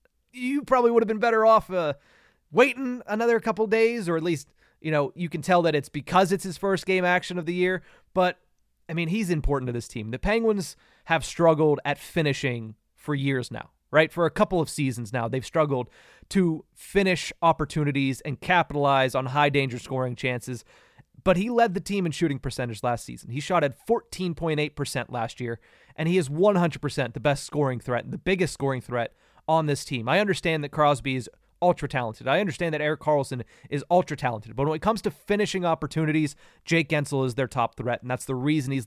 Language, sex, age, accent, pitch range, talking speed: English, male, 30-49, American, 130-175 Hz, 195 wpm